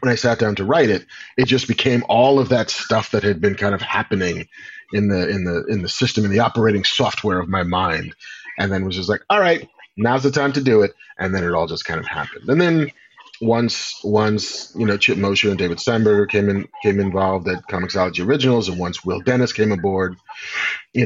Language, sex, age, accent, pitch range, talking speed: English, male, 30-49, American, 100-135 Hz, 230 wpm